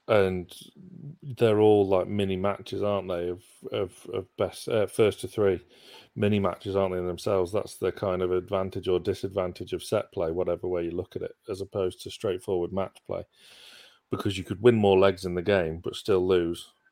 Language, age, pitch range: English, 30-49, 95-115 Hz